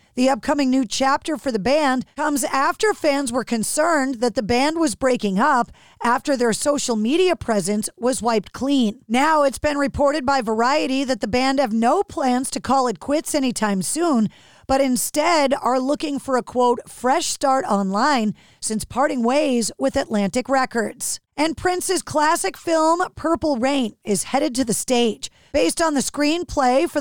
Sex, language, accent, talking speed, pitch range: female, English, American, 170 wpm, 245-295 Hz